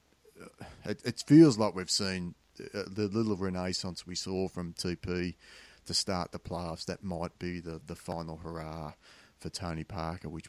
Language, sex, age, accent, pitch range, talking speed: English, male, 30-49, Australian, 80-95 Hz, 155 wpm